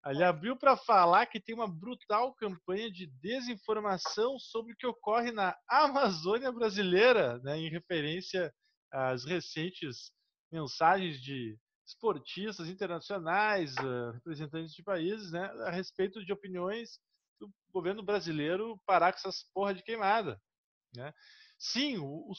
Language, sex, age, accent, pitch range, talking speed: Portuguese, male, 20-39, Brazilian, 170-240 Hz, 125 wpm